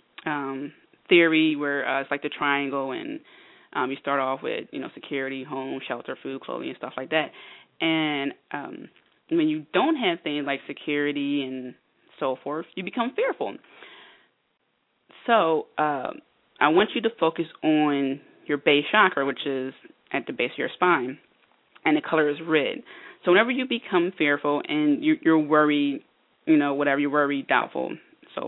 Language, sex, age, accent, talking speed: English, female, 20-39, American, 165 wpm